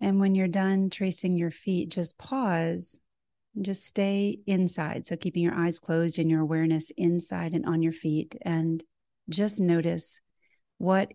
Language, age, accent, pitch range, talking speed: English, 30-49, American, 160-190 Hz, 155 wpm